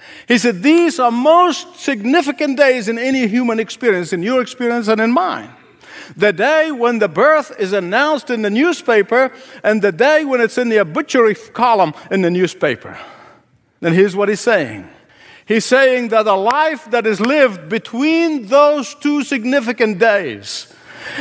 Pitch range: 225-285 Hz